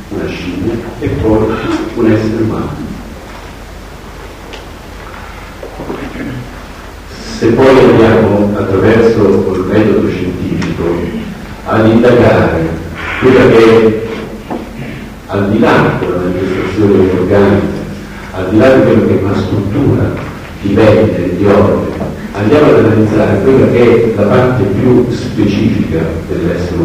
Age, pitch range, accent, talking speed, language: 50-69, 90-110 Hz, native, 105 wpm, Italian